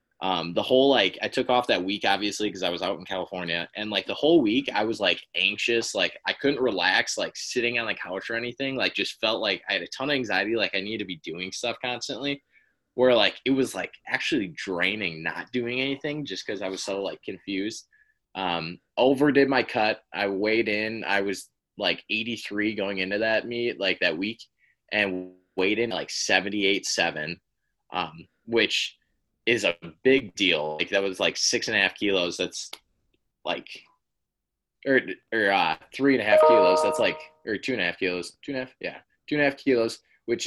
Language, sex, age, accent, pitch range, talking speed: English, male, 20-39, American, 95-120 Hz, 205 wpm